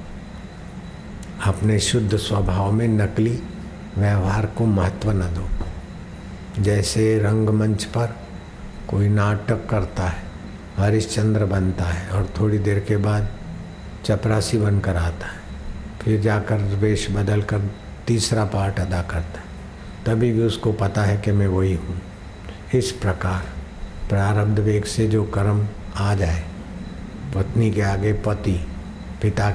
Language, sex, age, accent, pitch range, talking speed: Hindi, male, 60-79, native, 95-105 Hz, 125 wpm